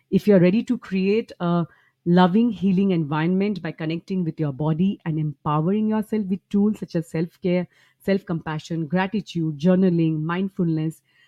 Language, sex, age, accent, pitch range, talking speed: English, female, 30-49, Indian, 160-195 Hz, 140 wpm